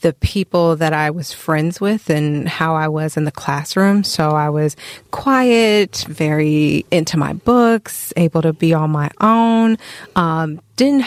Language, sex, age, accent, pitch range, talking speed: English, female, 30-49, American, 155-185 Hz, 165 wpm